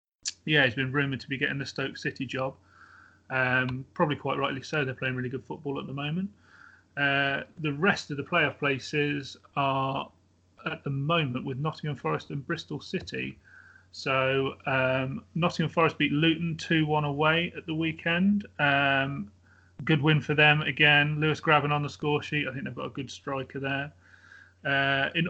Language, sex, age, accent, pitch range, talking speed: English, male, 30-49, British, 135-160 Hz, 175 wpm